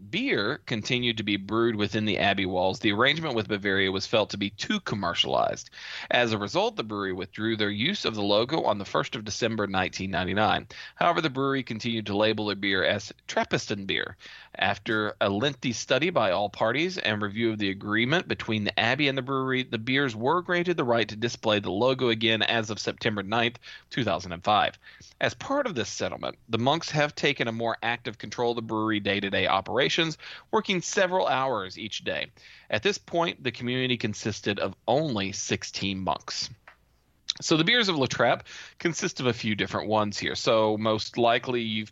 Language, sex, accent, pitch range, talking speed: English, male, American, 105-130 Hz, 190 wpm